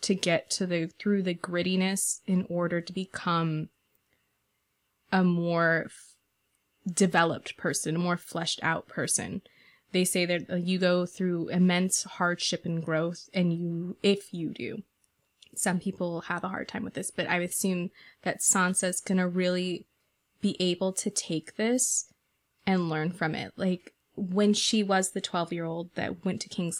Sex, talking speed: female, 160 wpm